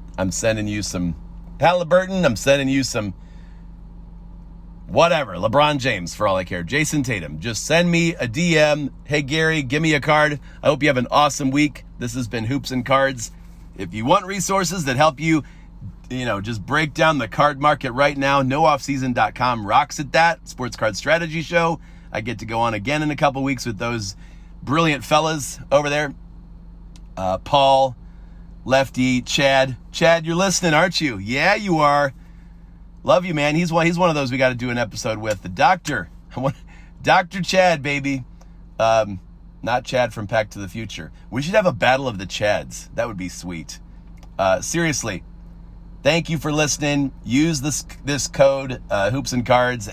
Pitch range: 105-150 Hz